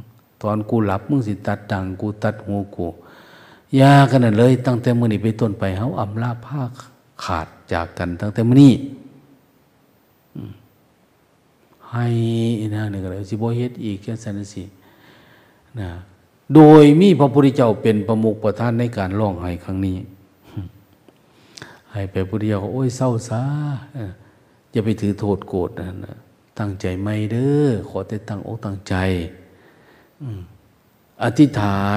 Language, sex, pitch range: Thai, male, 100-120 Hz